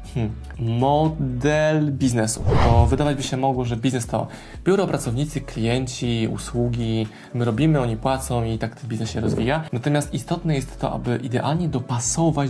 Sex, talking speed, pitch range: male, 155 wpm, 120-145 Hz